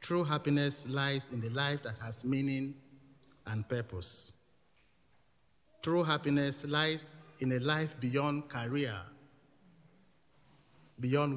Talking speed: 105 wpm